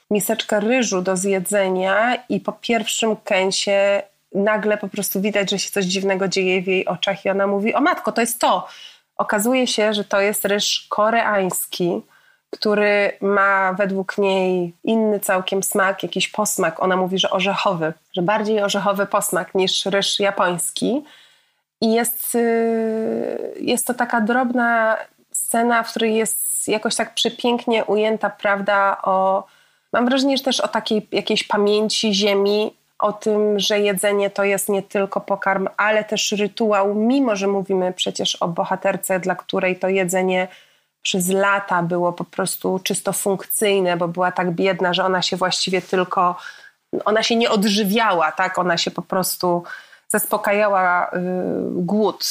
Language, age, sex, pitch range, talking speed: Polish, 30-49, female, 190-220 Hz, 145 wpm